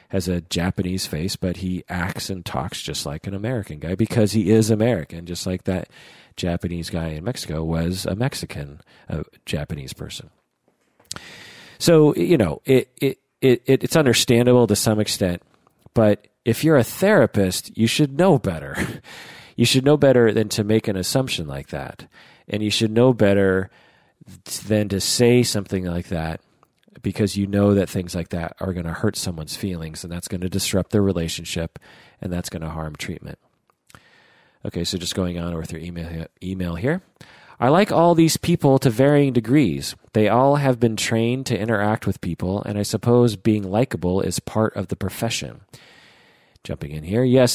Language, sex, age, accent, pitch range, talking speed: English, male, 40-59, American, 90-120 Hz, 175 wpm